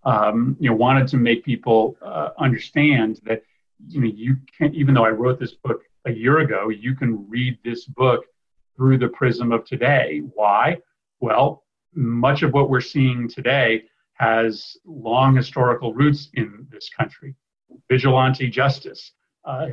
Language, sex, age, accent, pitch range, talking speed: English, male, 40-59, American, 115-140 Hz, 160 wpm